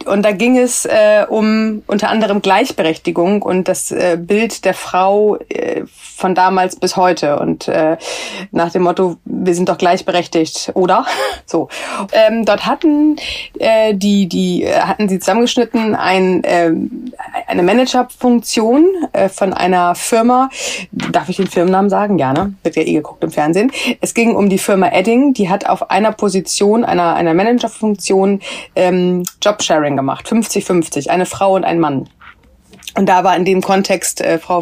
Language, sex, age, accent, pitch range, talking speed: German, female, 30-49, German, 180-225 Hz, 160 wpm